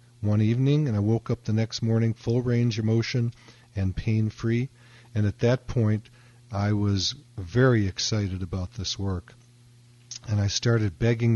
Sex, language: male, English